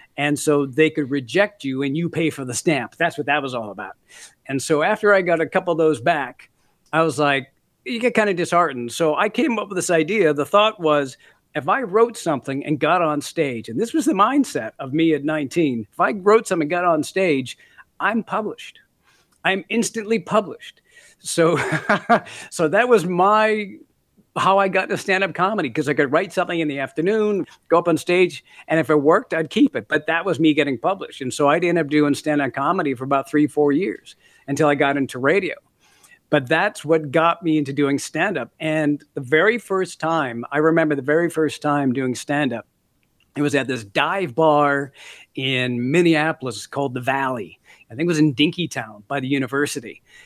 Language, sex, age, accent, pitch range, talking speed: English, male, 50-69, American, 140-180 Hz, 205 wpm